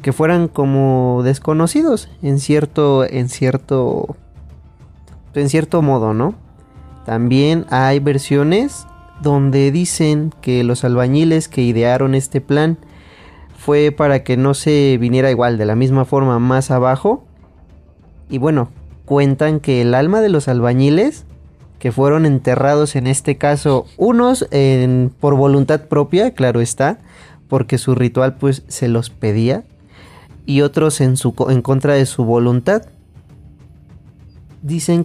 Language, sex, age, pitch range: Spanish, male, 30-49, 125-150 Hz